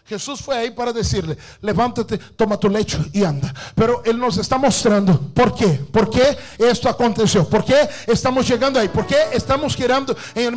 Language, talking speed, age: English, 185 wpm, 50-69